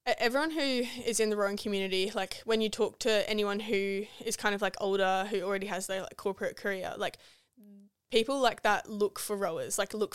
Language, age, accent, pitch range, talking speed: English, 10-29, Australian, 190-215 Hz, 205 wpm